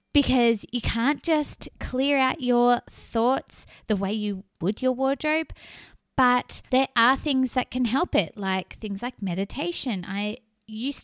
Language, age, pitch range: English, 20-39, 190-260 Hz